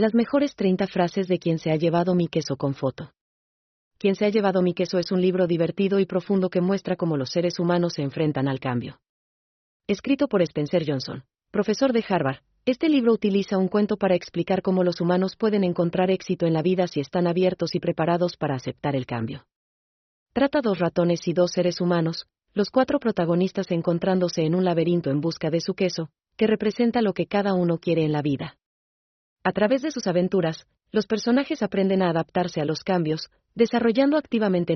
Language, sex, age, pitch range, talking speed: Spanish, female, 40-59, 160-195 Hz, 190 wpm